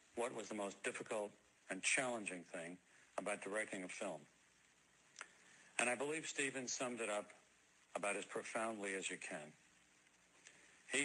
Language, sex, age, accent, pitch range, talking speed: English, male, 70-89, American, 90-120 Hz, 140 wpm